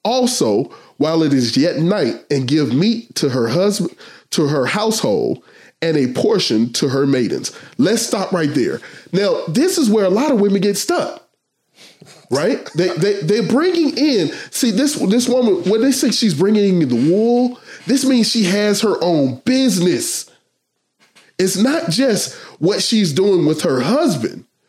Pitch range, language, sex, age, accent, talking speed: 165-240 Hz, English, male, 20-39, American, 170 wpm